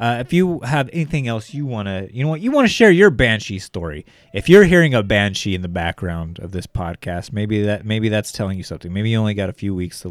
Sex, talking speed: male, 265 wpm